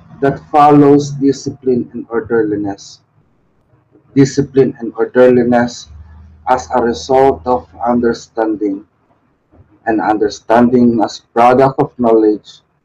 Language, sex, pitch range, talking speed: English, male, 120-145 Hz, 90 wpm